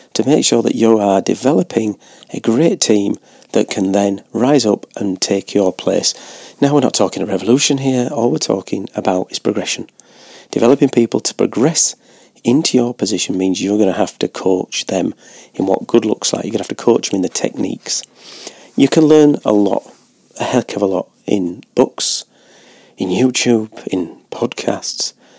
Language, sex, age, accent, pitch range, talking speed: English, male, 40-59, British, 100-125 Hz, 185 wpm